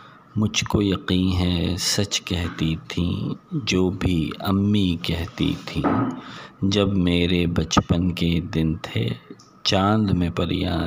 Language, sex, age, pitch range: Urdu, male, 50-69, 85-110 Hz